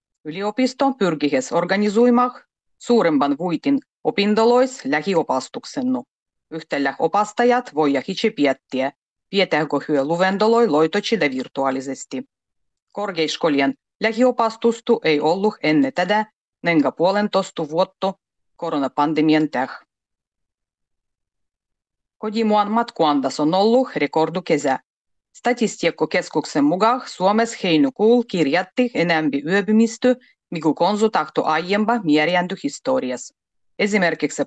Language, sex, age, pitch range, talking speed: Finnish, female, 30-49, 150-235 Hz, 80 wpm